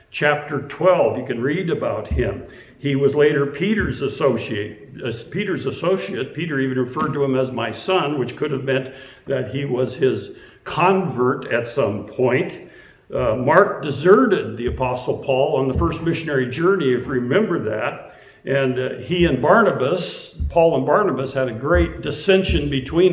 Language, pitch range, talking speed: English, 130-165 Hz, 165 wpm